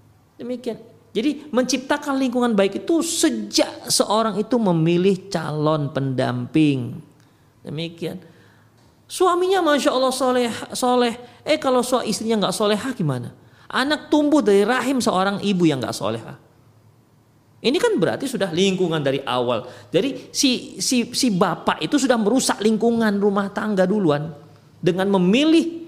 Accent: native